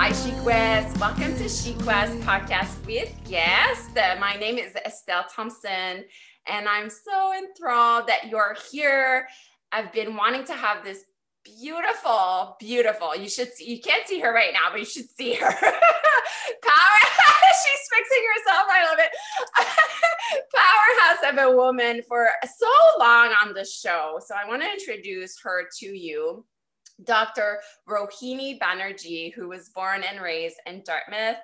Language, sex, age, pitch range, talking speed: English, female, 20-39, 180-260 Hz, 145 wpm